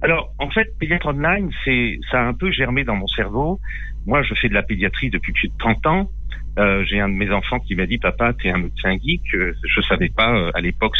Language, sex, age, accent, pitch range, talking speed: French, male, 50-69, French, 100-140 Hz, 245 wpm